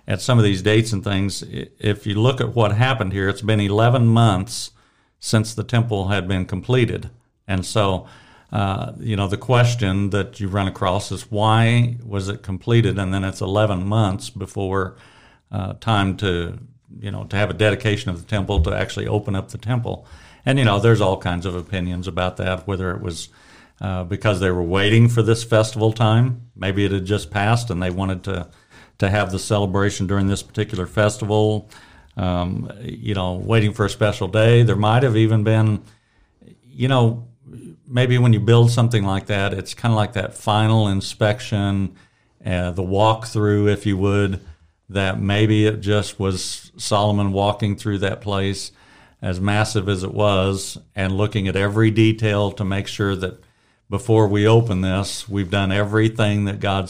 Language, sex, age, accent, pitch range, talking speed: English, male, 60-79, American, 95-110 Hz, 180 wpm